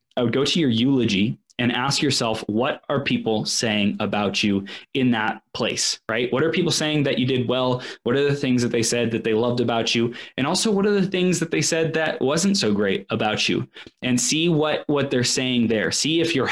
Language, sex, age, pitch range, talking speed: English, male, 20-39, 115-130 Hz, 235 wpm